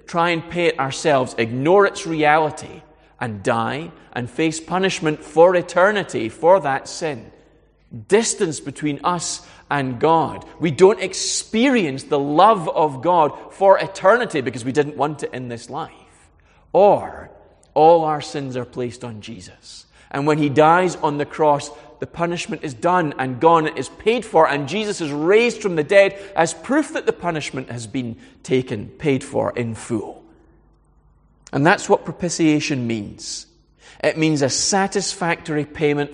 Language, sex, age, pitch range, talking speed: English, male, 30-49, 130-175 Hz, 155 wpm